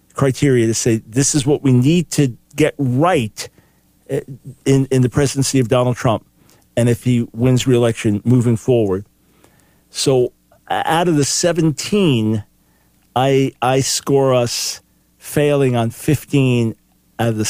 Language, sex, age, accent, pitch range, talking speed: English, male, 50-69, American, 120-165 Hz, 135 wpm